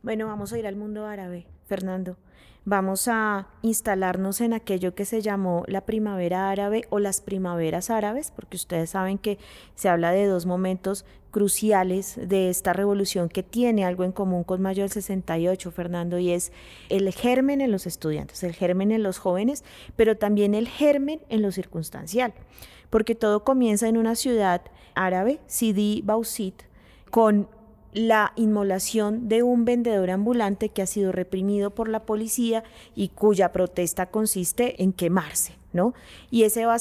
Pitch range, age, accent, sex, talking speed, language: 185-220 Hz, 30-49, Colombian, female, 160 wpm, Spanish